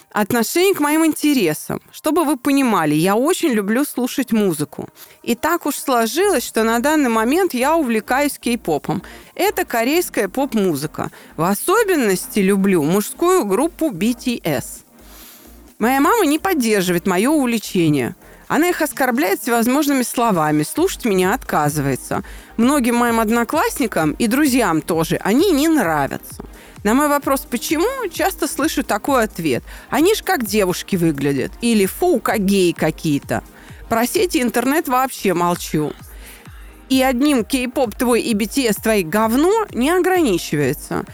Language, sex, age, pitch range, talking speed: Russian, female, 30-49, 210-310 Hz, 125 wpm